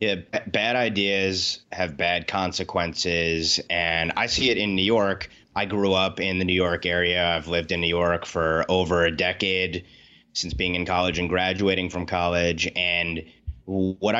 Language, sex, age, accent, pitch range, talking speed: English, male, 30-49, American, 85-100 Hz, 170 wpm